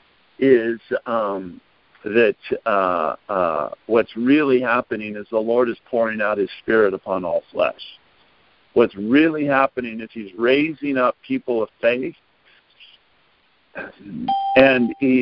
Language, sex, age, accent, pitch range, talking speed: English, male, 50-69, American, 115-140 Hz, 120 wpm